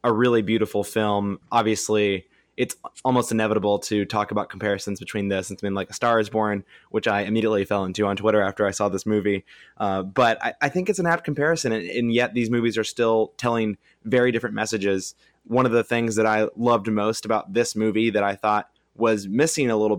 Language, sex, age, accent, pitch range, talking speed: English, male, 20-39, American, 100-115 Hz, 215 wpm